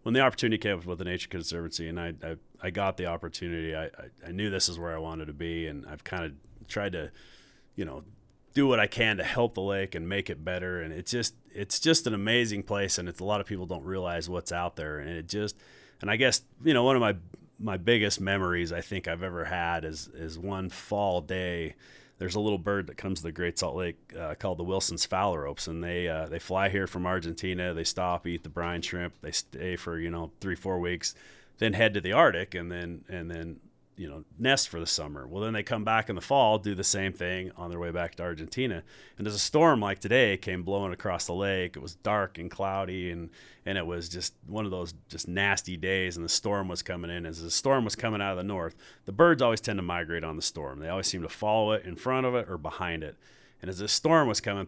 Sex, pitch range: male, 85-100 Hz